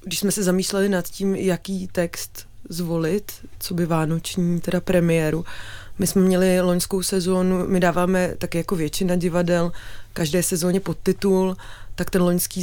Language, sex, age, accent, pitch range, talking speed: Czech, female, 20-39, native, 165-185 Hz, 145 wpm